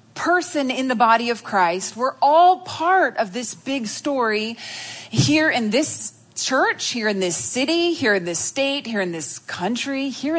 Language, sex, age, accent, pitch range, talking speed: English, female, 30-49, American, 190-260 Hz, 175 wpm